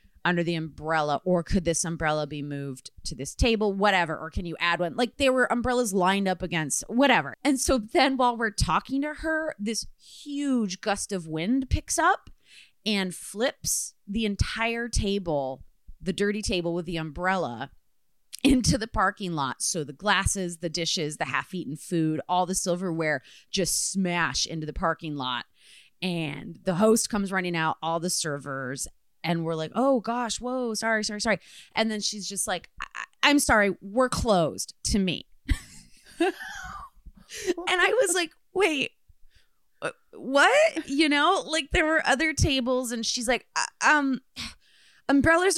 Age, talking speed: 30-49, 160 wpm